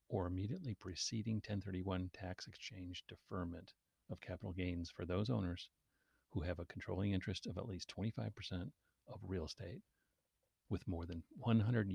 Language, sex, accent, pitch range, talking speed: English, male, American, 90-110 Hz, 145 wpm